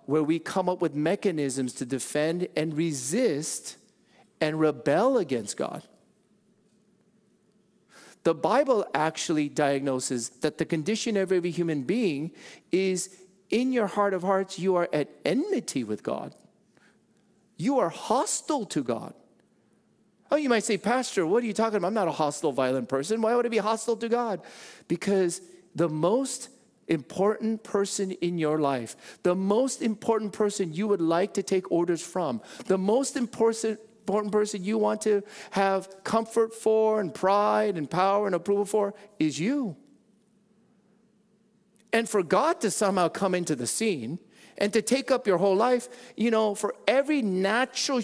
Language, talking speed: English, 155 wpm